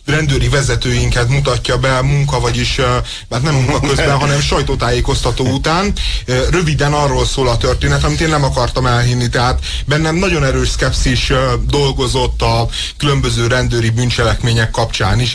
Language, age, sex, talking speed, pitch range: Hungarian, 30-49, male, 135 wpm, 115-140 Hz